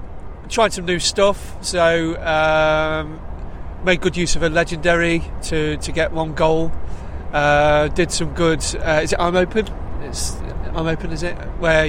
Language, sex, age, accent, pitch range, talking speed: English, male, 30-49, British, 150-170 Hz, 160 wpm